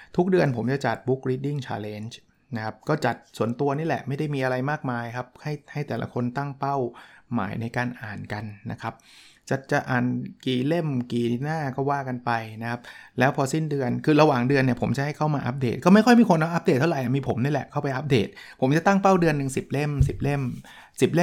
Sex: male